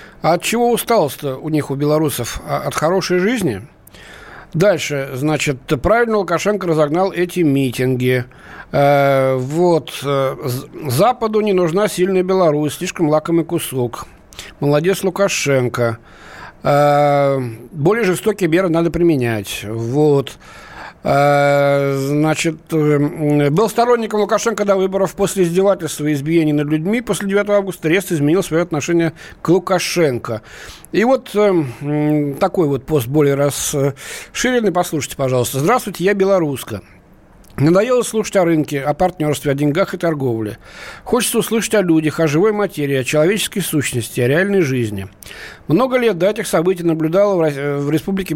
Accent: native